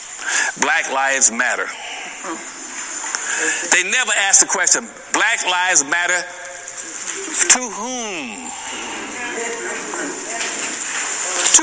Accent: American